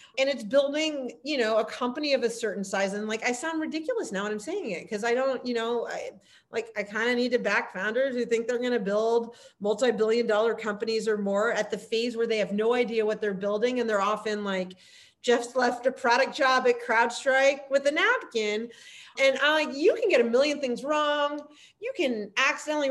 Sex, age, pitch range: female, 40-59, 205-265 Hz